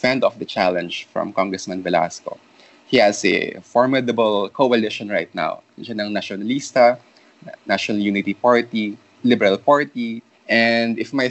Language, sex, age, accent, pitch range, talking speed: English, male, 20-39, Filipino, 110-135 Hz, 125 wpm